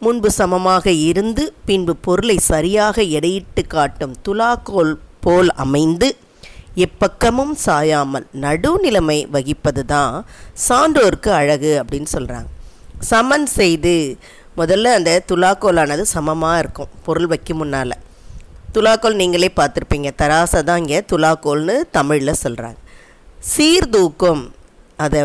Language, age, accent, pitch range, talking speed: Tamil, 20-39, native, 145-190 Hz, 95 wpm